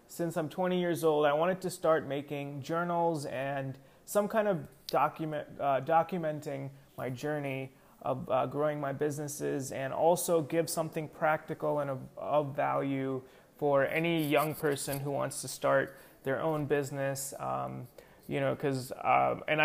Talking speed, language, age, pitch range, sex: 155 wpm, English, 30-49, 140-175 Hz, male